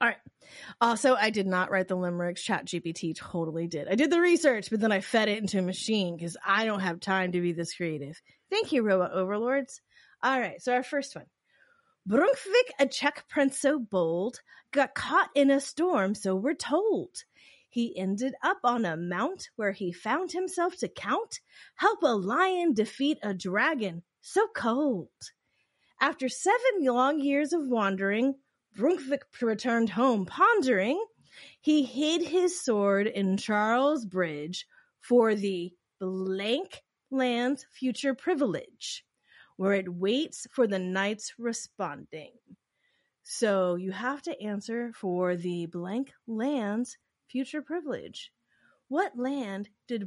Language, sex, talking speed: English, female, 145 wpm